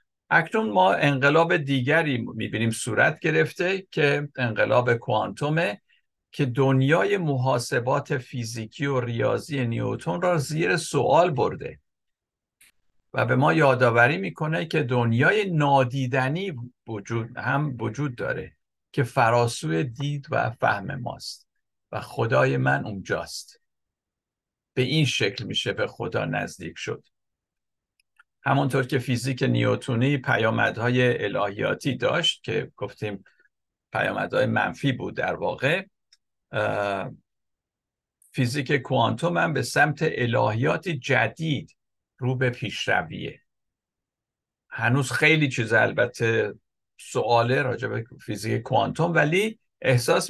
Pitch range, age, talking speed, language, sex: 120-150 Hz, 50-69, 100 wpm, Persian, male